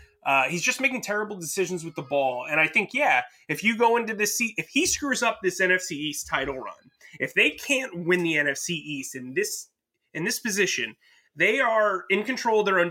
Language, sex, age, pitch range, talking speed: English, male, 30-49, 145-205 Hz, 220 wpm